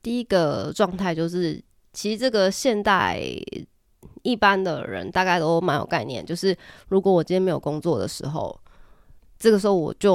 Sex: female